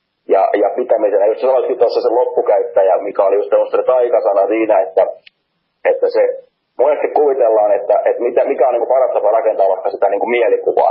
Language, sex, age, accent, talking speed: Finnish, male, 30-49, native, 185 wpm